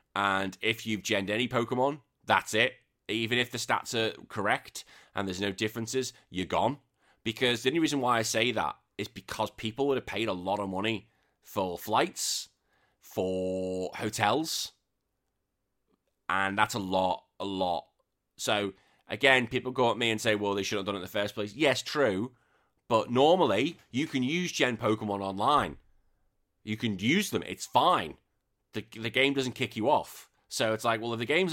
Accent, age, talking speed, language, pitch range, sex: British, 20-39, 185 wpm, English, 100-125 Hz, male